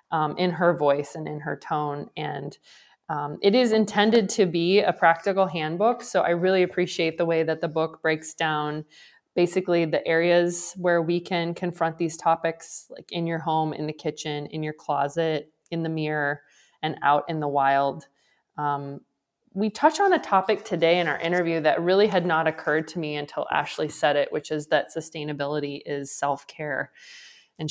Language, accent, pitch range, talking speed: English, American, 150-175 Hz, 180 wpm